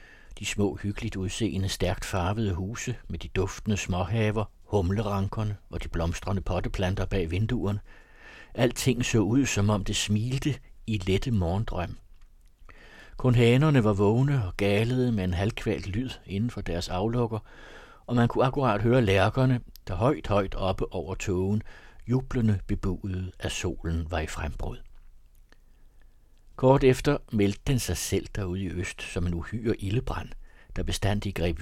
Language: Danish